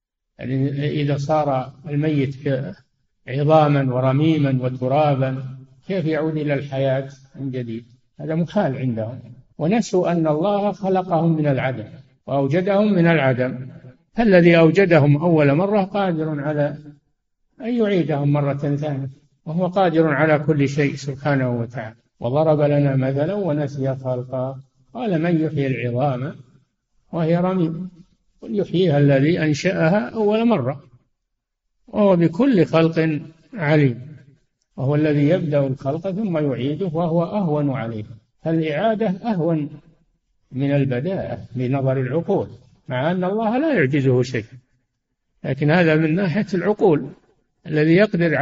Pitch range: 135-170 Hz